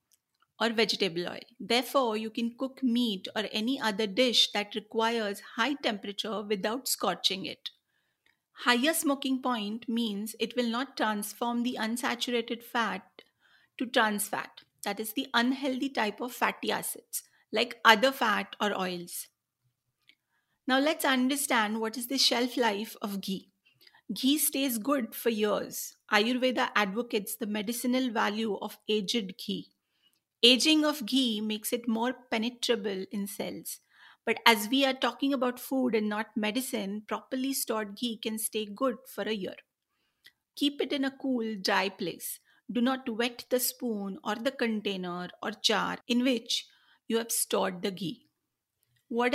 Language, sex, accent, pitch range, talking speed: Marathi, female, native, 215-255 Hz, 150 wpm